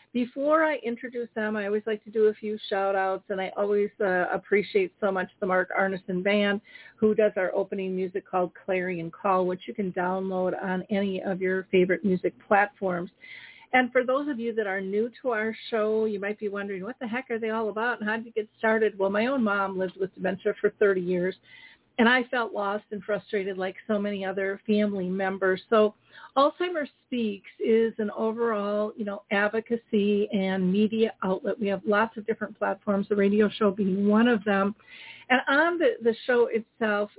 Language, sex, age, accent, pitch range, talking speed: English, female, 40-59, American, 195-225 Hz, 200 wpm